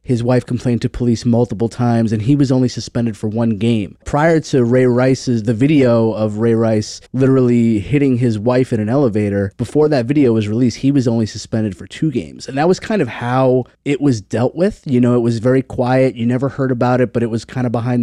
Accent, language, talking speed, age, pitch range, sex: American, English, 235 wpm, 20-39, 120-140 Hz, male